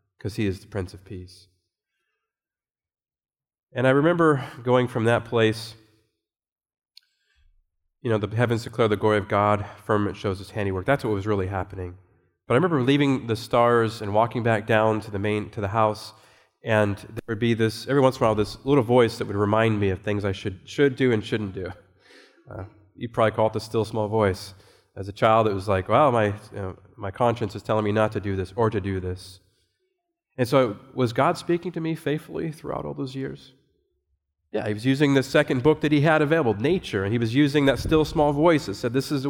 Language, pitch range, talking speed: English, 105-125 Hz, 220 wpm